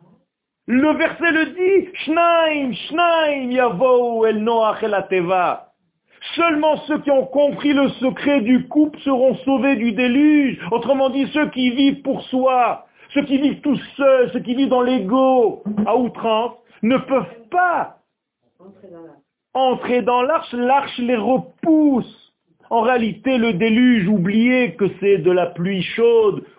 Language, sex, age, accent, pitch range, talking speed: French, male, 50-69, French, 210-275 Hz, 130 wpm